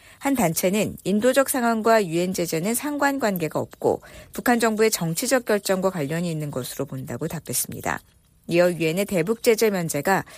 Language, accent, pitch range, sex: Korean, native, 160-230 Hz, female